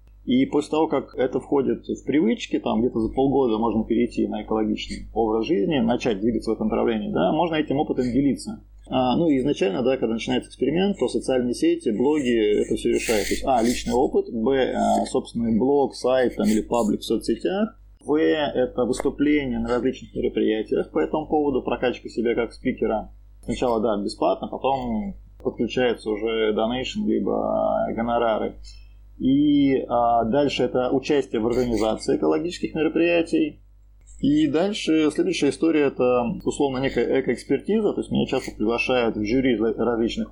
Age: 20-39